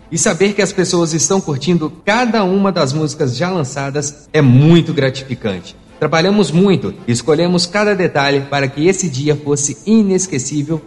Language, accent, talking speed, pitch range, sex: Portuguese, Brazilian, 155 wpm, 135-185 Hz, male